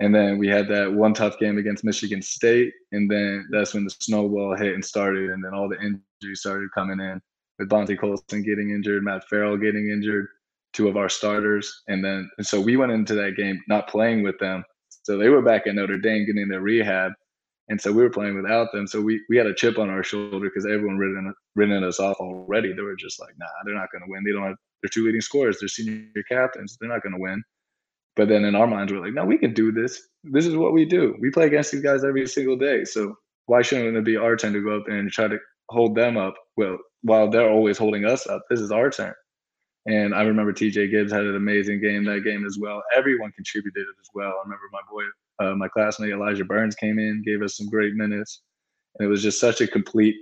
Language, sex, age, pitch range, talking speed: English, male, 20-39, 100-110 Hz, 245 wpm